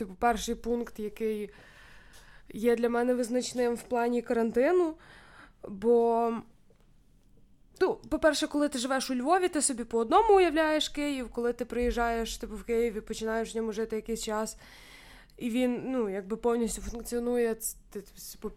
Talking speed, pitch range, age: 145 wpm, 225-270 Hz, 20-39